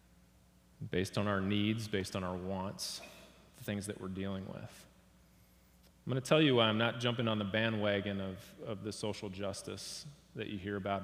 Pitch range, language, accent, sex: 95-110 Hz, English, American, male